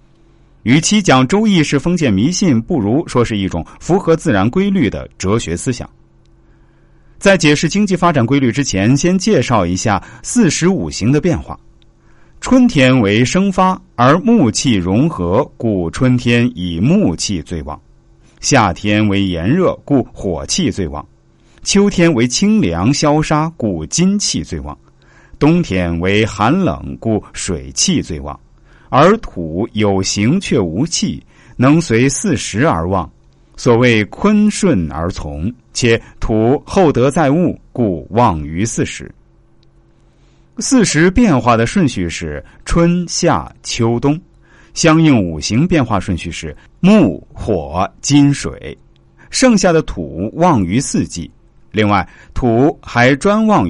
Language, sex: Chinese, male